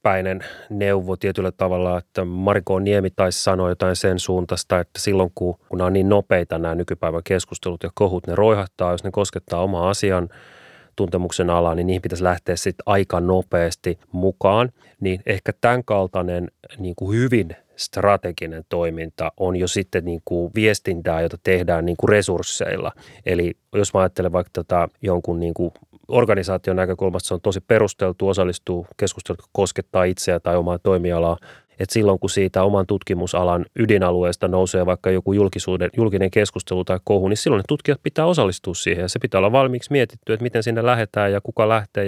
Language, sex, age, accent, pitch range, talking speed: Finnish, male, 30-49, native, 90-105 Hz, 160 wpm